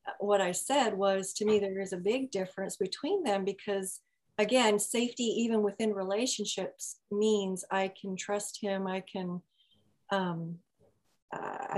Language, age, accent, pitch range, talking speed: English, 40-59, American, 190-220 Hz, 145 wpm